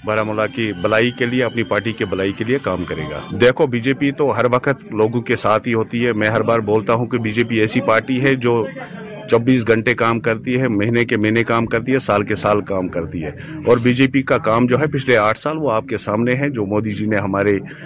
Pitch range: 110-125 Hz